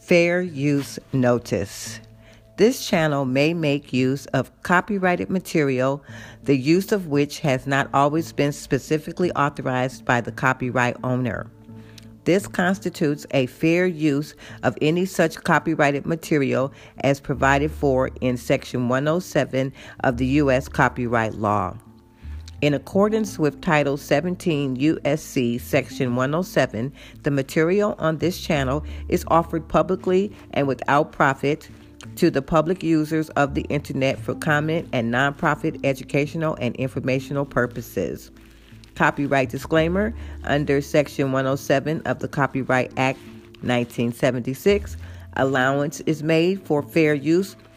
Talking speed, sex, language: 120 wpm, female, English